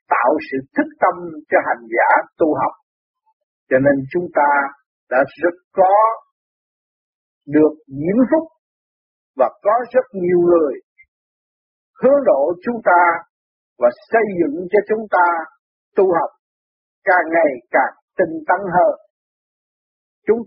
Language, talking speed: Vietnamese, 125 wpm